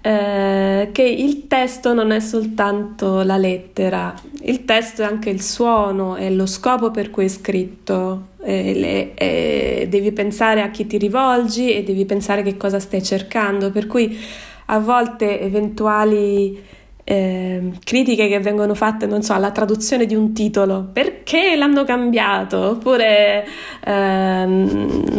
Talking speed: 145 wpm